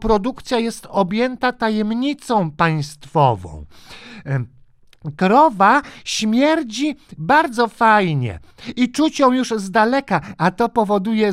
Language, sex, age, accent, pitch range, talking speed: Polish, male, 50-69, native, 175-260 Hz, 95 wpm